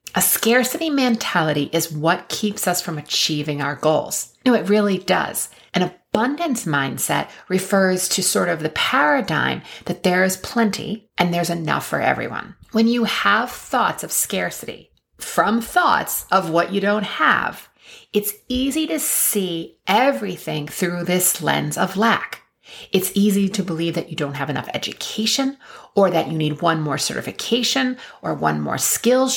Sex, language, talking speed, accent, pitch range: female, English, 155 wpm, American, 160-220 Hz